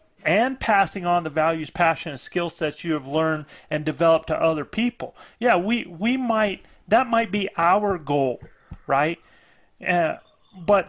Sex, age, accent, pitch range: male, 40-59, American, 165-220 Hz